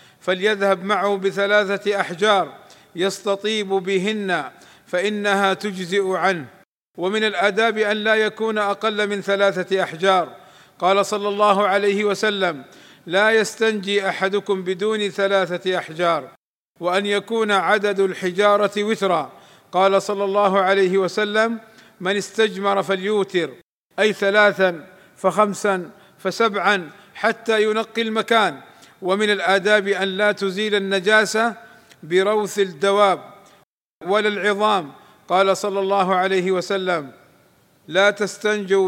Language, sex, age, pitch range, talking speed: Arabic, male, 50-69, 185-205 Hz, 100 wpm